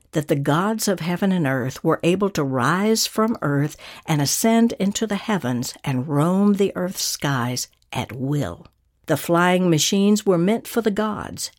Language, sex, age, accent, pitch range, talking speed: English, female, 60-79, American, 145-195 Hz, 170 wpm